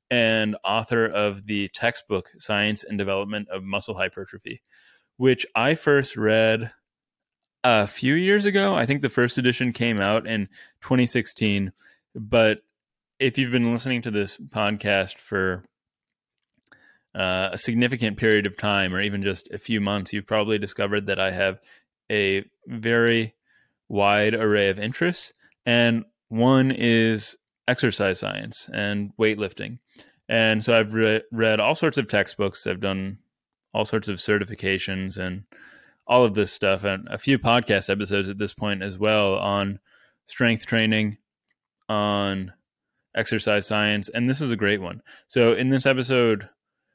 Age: 20-39